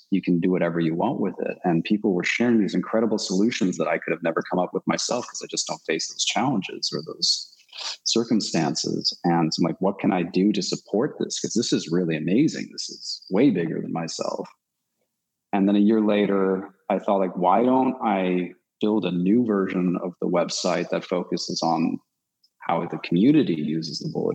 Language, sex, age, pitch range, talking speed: English, male, 30-49, 85-110 Hz, 200 wpm